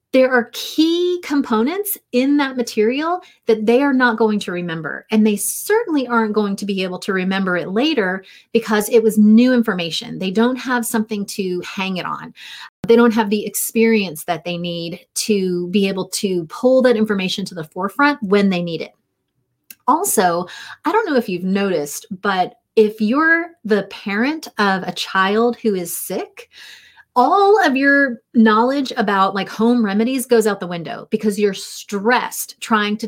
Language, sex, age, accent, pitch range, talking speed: English, female, 30-49, American, 190-245 Hz, 175 wpm